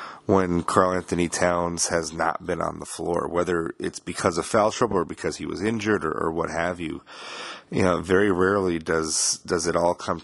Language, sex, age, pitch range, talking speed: English, male, 30-49, 85-105 Hz, 205 wpm